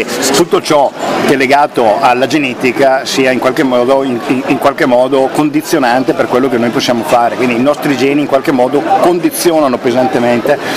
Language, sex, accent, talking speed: Italian, male, native, 155 wpm